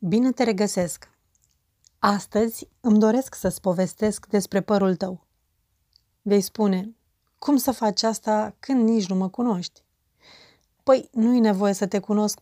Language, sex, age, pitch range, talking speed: Romanian, female, 30-49, 190-220 Hz, 135 wpm